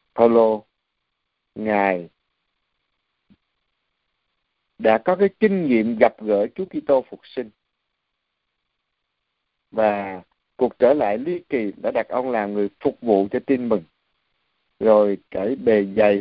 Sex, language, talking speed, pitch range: male, Vietnamese, 125 wpm, 100-140 Hz